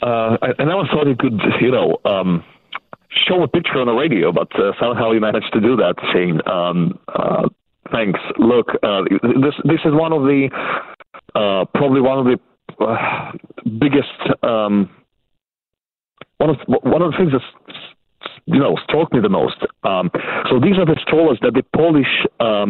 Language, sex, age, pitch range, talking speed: English, male, 40-59, 105-135 Hz, 175 wpm